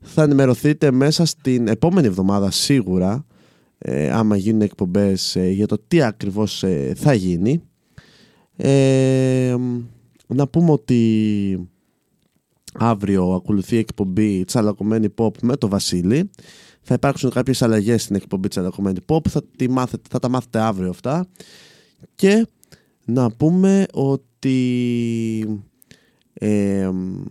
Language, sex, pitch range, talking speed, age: Greek, male, 105-145 Hz, 115 wpm, 20-39